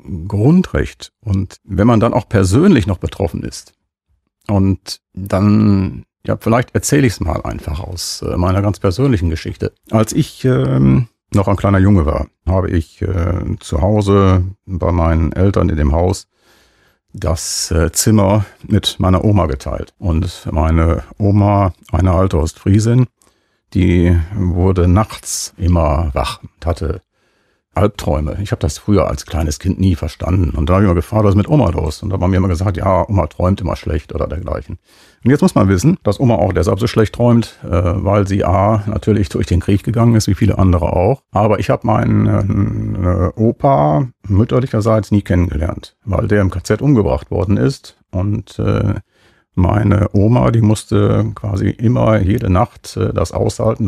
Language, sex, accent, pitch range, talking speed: German, male, German, 90-105 Hz, 165 wpm